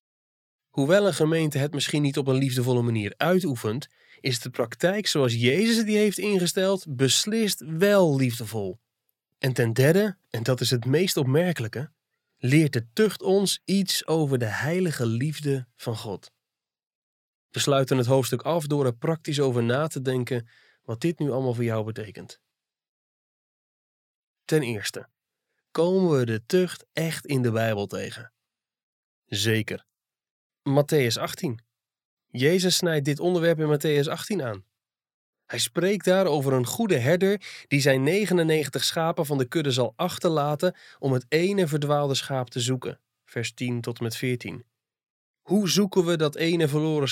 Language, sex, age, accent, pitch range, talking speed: Dutch, male, 20-39, Dutch, 125-170 Hz, 150 wpm